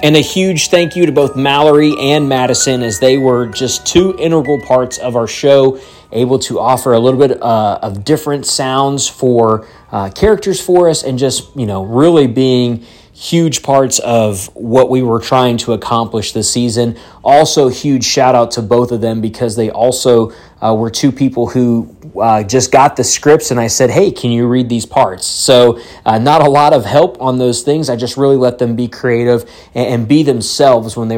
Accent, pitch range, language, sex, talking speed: American, 115-140 Hz, English, male, 200 wpm